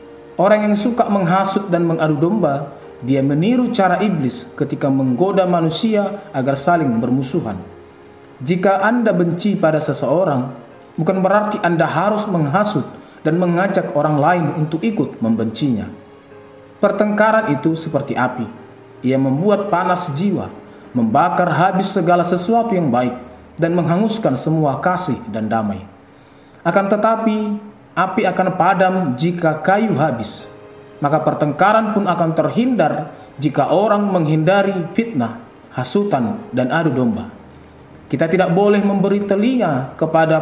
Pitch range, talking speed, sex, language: 140-195 Hz, 120 wpm, male, Indonesian